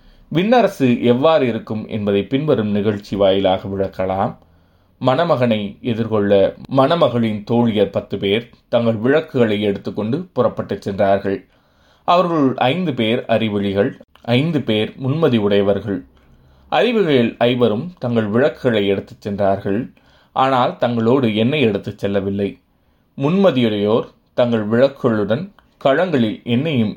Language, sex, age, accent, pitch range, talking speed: Tamil, male, 30-49, native, 100-130 Hz, 95 wpm